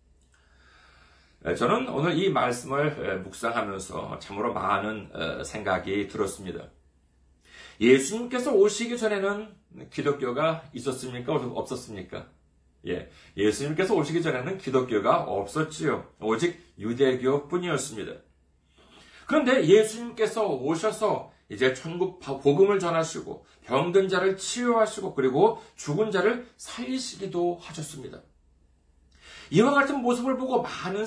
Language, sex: Korean, male